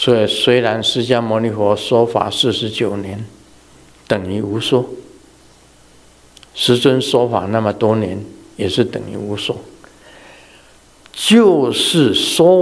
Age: 60-79